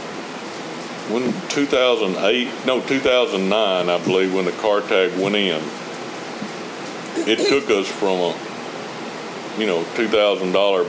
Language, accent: English, American